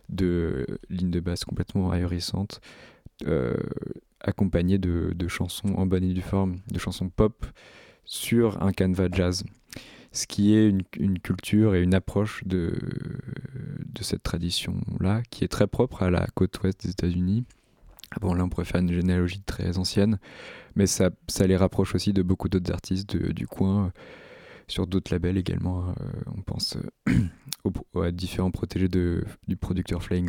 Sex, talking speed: male, 165 wpm